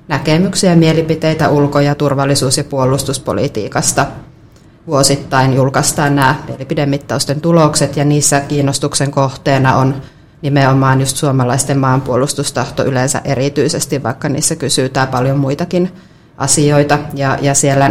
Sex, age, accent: female, 30-49, native